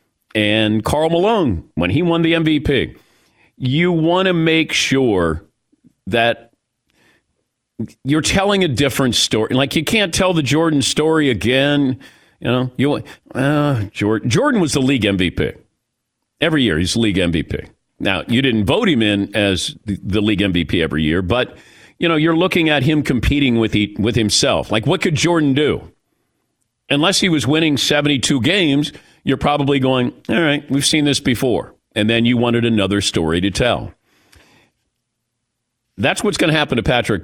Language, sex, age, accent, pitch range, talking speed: English, male, 40-59, American, 110-155 Hz, 165 wpm